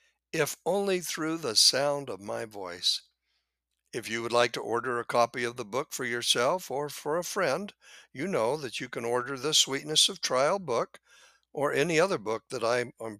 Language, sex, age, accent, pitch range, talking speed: English, male, 60-79, American, 120-155 Hz, 190 wpm